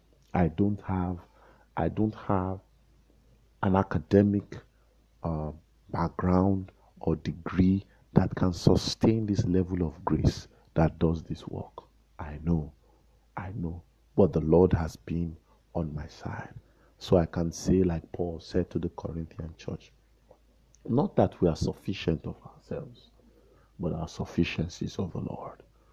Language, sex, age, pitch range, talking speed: English, male, 50-69, 80-95 Hz, 140 wpm